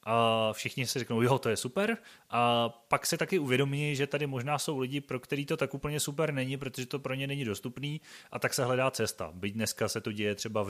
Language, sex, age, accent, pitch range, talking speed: Czech, male, 30-49, native, 110-135 Hz, 240 wpm